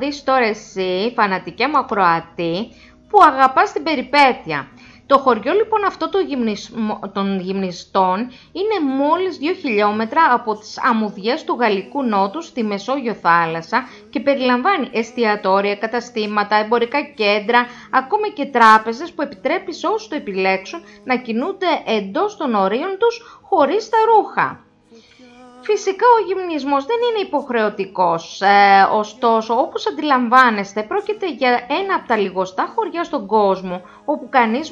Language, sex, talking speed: Greek, female, 125 wpm